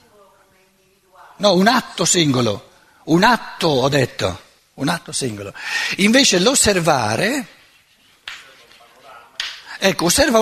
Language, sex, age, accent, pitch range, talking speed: Italian, male, 60-79, native, 135-210 Hz, 85 wpm